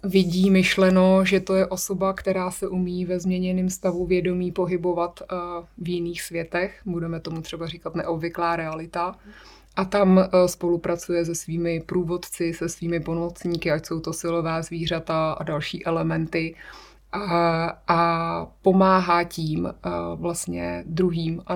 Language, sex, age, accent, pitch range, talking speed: Czech, female, 30-49, native, 165-180 Hz, 130 wpm